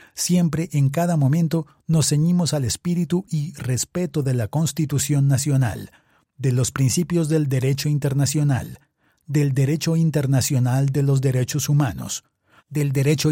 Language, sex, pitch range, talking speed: Spanish, male, 130-155 Hz, 130 wpm